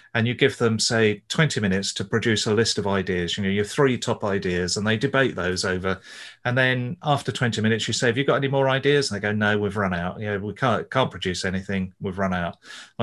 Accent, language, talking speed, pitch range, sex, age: British, English, 255 wpm, 100-125 Hz, male, 30-49